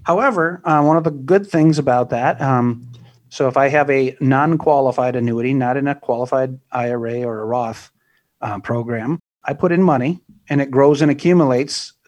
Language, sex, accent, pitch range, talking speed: English, male, American, 125-150 Hz, 180 wpm